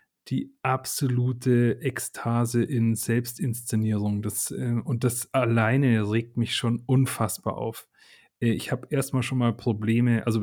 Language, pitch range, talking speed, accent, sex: German, 115-135 Hz, 120 wpm, German, male